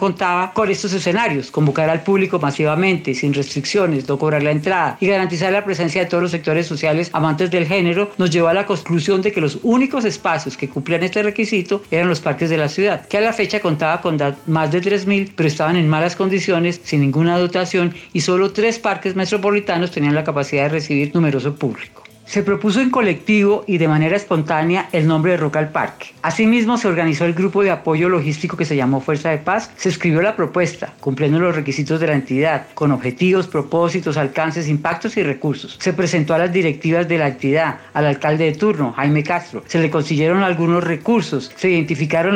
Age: 40-59